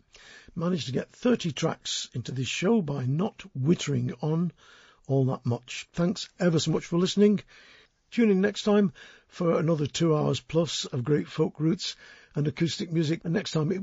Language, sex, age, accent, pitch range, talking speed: English, male, 50-69, British, 130-180 Hz, 180 wpm